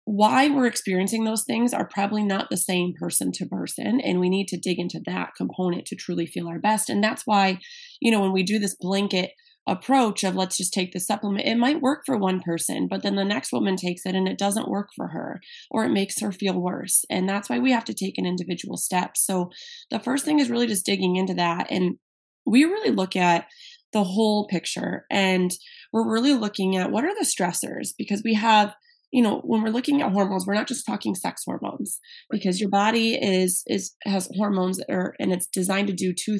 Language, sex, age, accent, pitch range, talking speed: English, female, 20-39, American, 185-230 Hz, 225 wpm